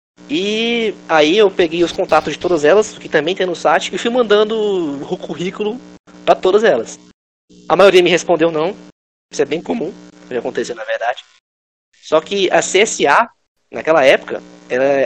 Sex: male